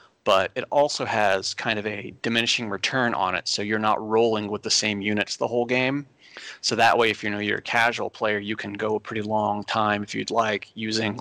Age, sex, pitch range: 30-49, male, 105-120 Hz